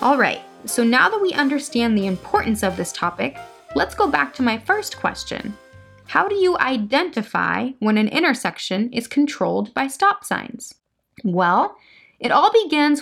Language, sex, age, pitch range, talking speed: English, female, 20-39, 190-275 Hz, 160 wpm